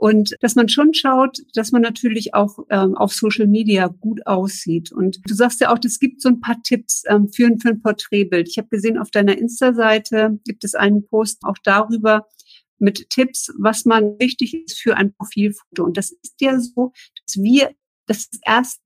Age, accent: 50-69, German